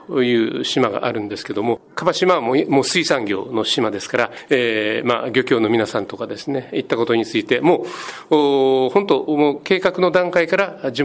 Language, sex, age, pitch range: Japanese, male, 40-59, 125-175 Hz